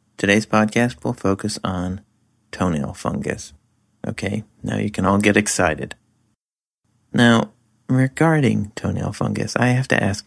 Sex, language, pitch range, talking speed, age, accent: male, English, 95-120 Hz, 130 wpm, 40-59, American